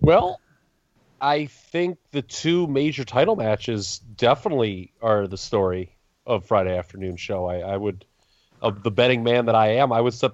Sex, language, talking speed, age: male, English, 170 wpm, 30-49